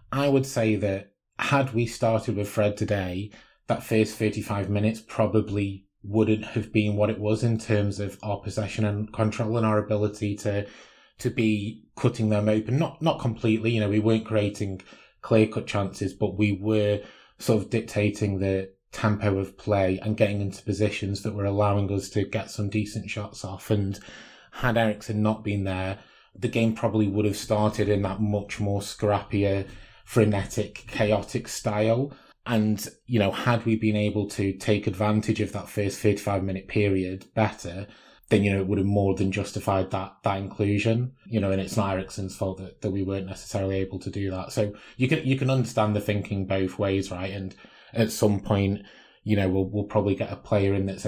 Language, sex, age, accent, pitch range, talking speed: English, male, 20-39, British, 100-110 Hz, 190 wpm